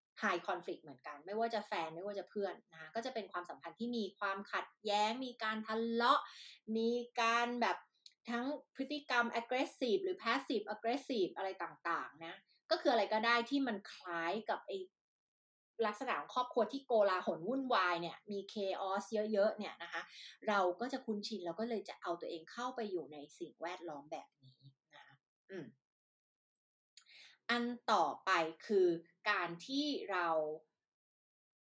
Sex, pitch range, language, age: female, 185-270 Hz, Thai, 20-39